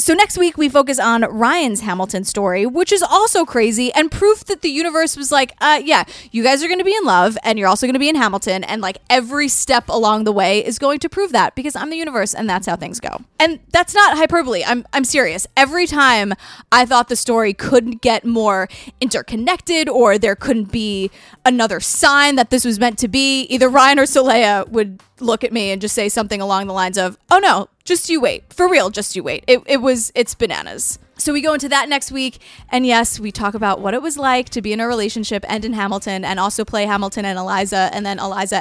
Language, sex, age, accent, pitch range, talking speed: English, female, 20-39, American, 210-280 Hz, 235 wpm